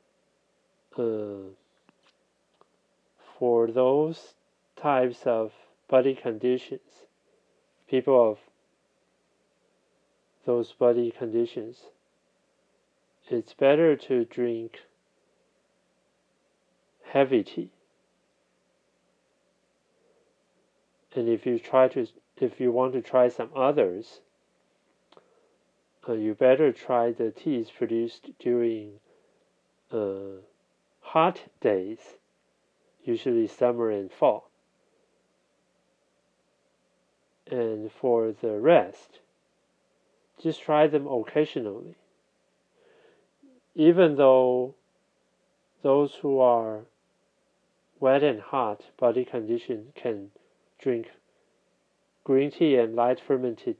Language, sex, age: Chinese, male, 40-59